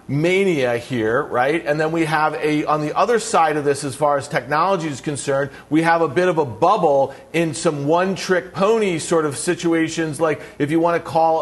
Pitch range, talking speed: 155-190 Hz, 210 wpm